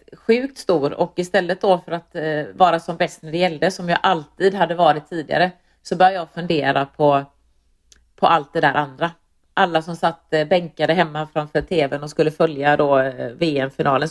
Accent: Swedish